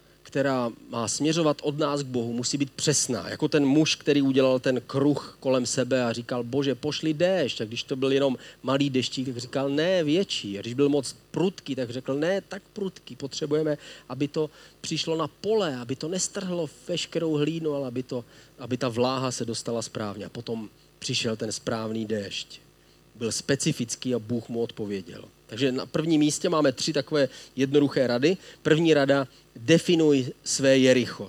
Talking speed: 175 wpm